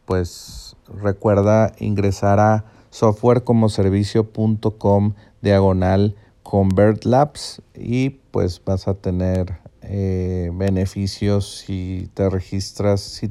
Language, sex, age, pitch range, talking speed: Spanish, male, 40-59, 95-110 Hz, 80 wpm